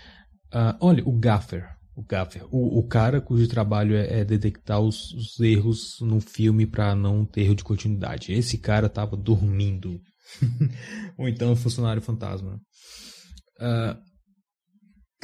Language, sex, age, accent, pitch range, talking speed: English, male, 20-39, Brazilian, 95-115 Hz, 140 wpm